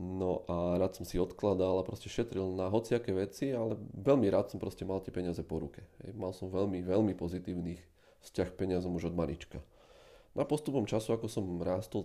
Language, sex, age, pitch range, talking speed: Slovak, male, 30-49, 90-105 Hz, 190 wpm